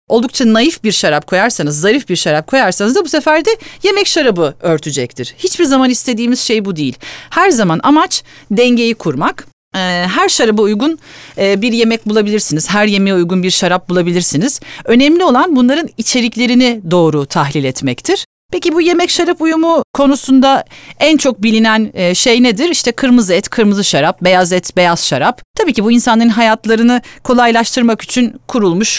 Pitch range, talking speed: 180-255 Hz, 155 wpm